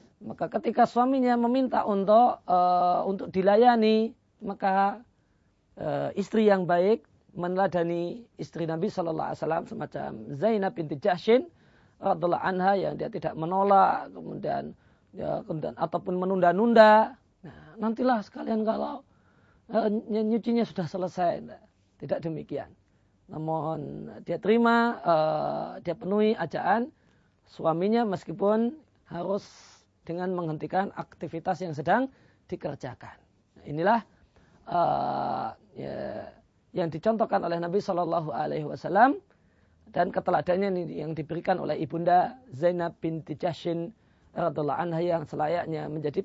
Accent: native